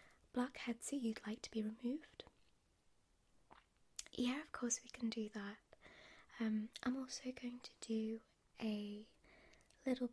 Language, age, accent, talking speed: English, 20-39, British, 135 wpm